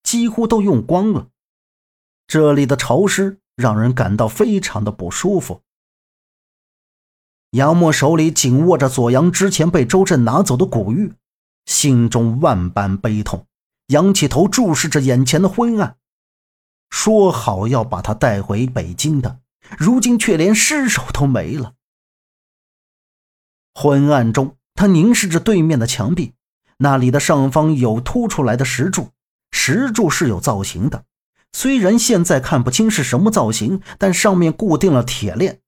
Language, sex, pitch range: Chinese, male, 125-190 Hz